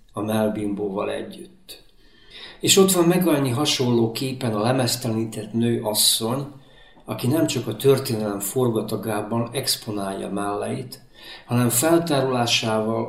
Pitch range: 110-130 Hz